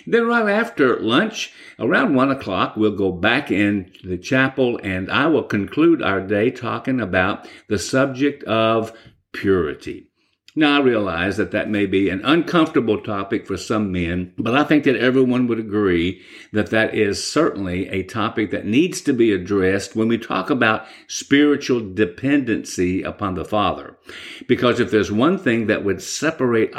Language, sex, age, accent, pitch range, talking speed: English, male, 50-69, American, 95-125 Hz, 165 wpm